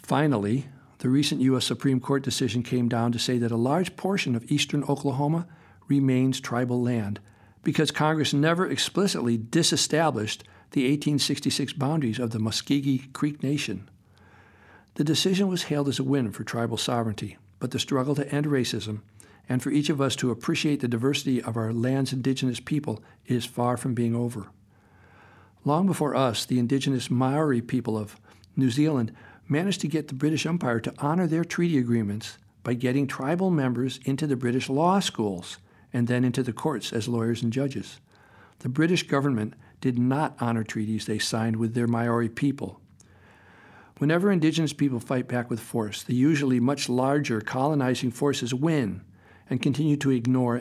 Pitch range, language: 115-140 Hz, English